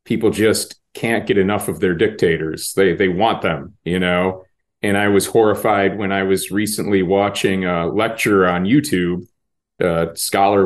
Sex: male